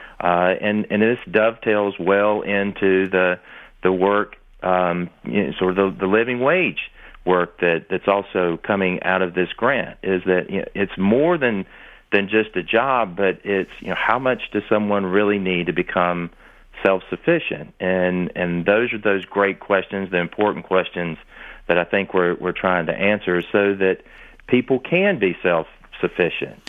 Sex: male